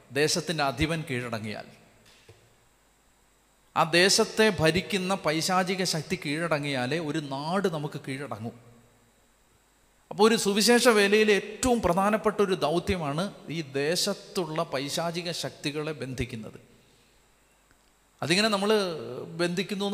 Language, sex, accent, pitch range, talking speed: Malayalam, male, native, 145-200 Hz, 85 wpm